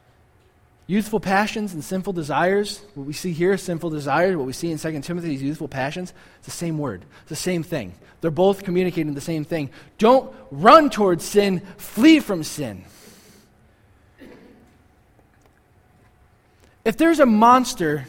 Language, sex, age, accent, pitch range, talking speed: English, male, 20-39, American, 145-220 Hz, 155 wpm